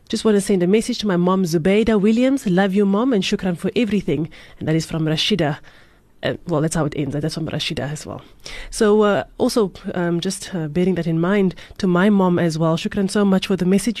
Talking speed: 235 wpm